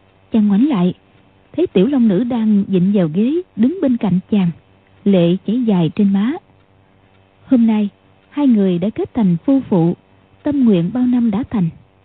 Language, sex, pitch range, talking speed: Vietnamese, female, 155-240 Hz, 175 wpm